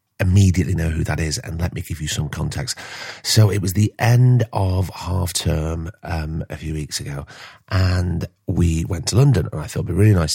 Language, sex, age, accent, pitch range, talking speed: English, male, 30-49, British, 80-105 Hz, 215 wpm